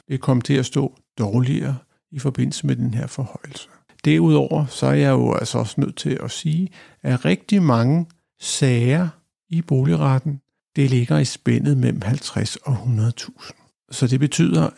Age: 60-79